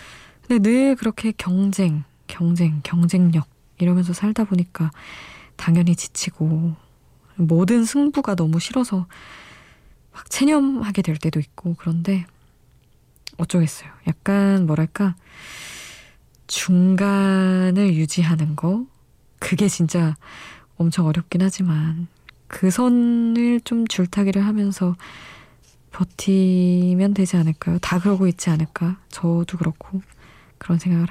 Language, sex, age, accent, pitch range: Korean, female, 20-39, native, 160-195 Hz